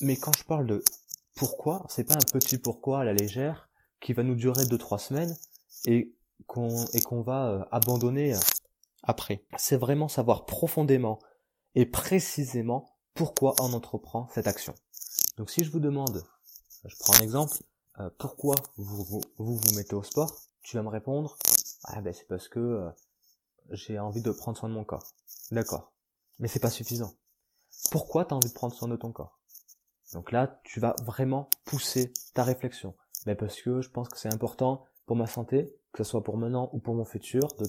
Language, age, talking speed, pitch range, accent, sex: French, 20-39, 190 wpm, 115-140 Hz, French, male